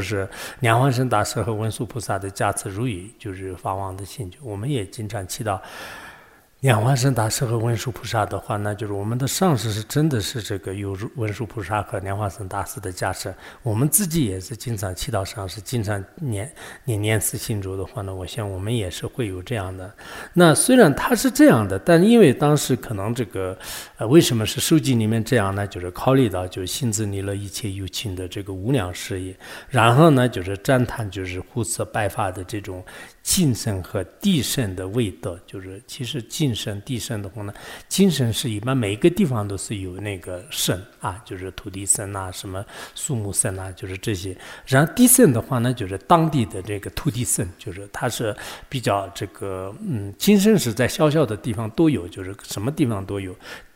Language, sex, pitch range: English, male, 95-130 Hz